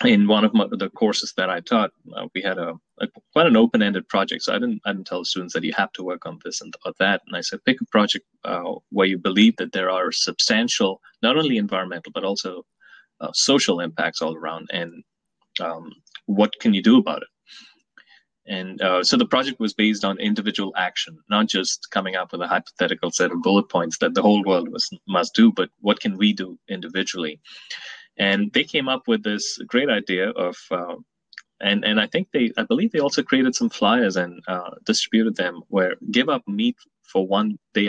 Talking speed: 215 wpm